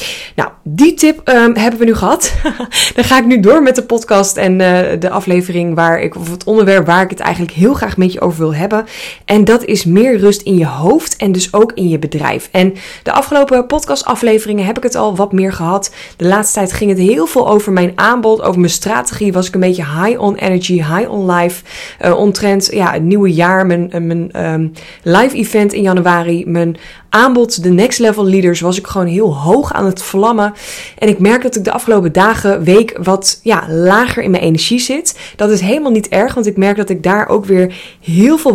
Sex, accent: female, Dutch